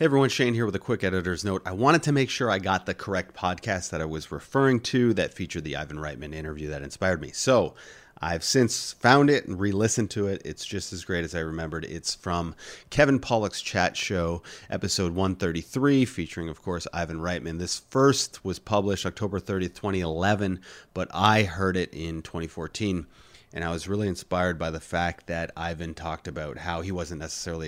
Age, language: 30-49, English